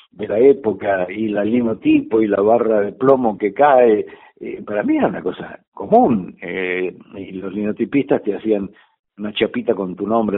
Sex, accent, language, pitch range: male, Argentinian, Spanish, 105-160 Hz